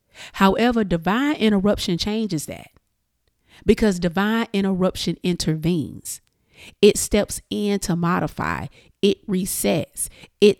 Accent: American